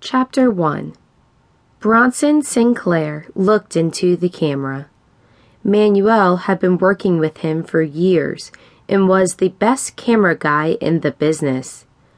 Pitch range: 155-190 Hz